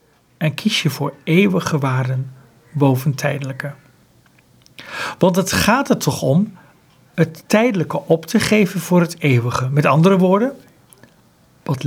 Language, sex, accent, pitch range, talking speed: Dutch, male, Dutch, 135-180 Hz, 130 wpm